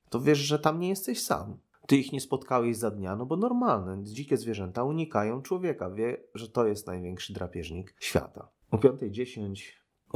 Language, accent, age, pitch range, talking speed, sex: Polish, native, 30-49, 100-130 Hz, 170 wpm, male